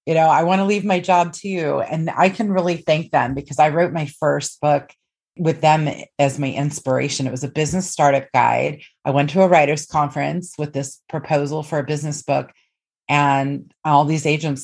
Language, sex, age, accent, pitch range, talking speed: English, female, 30-49, American, 140-160 Hz, 205 wpm